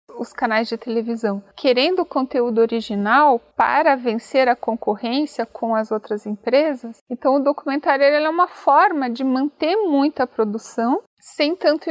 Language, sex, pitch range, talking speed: Portuguese, female, 225-280 Hz, 145 wpm